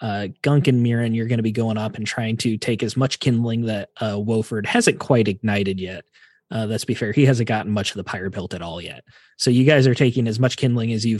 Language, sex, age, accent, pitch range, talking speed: English, male, 20-39, American, 115-140 Hz, 265 wpm